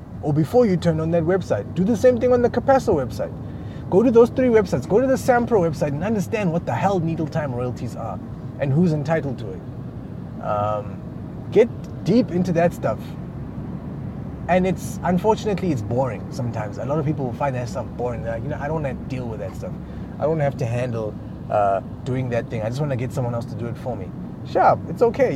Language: English